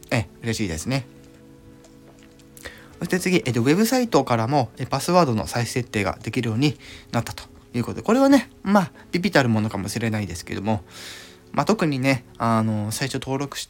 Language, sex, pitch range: Japanese, male, 100-140 Hz